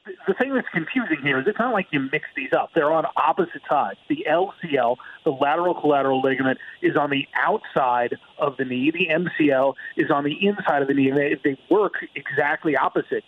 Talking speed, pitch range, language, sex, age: 200 wpm, 145-195 Hz, English, male, 40-59